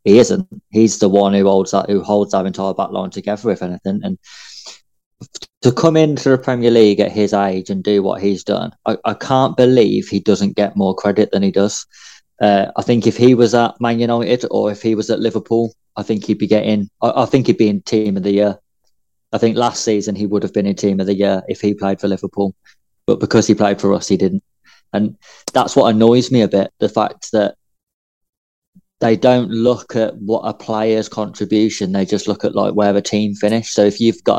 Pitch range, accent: 100-115 Hz, British